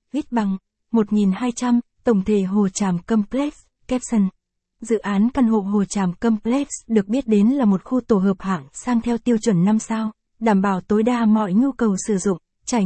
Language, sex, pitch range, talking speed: Vietnamese, female, 200-240 Hz, 185 wpm